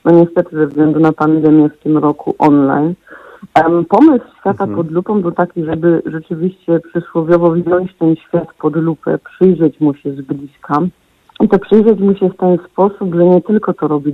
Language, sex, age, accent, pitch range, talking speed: Polish, female, 50-69, native, 155-180 Hz, 180 wpm